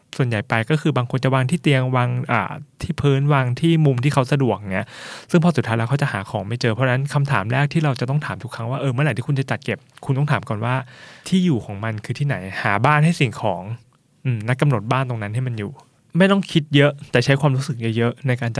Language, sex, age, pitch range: Thai, male, 20-39, 115-140 Hz